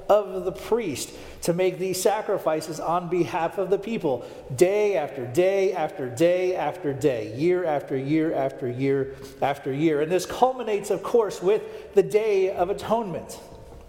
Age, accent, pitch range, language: 40-59, American, 150-195 Hz, English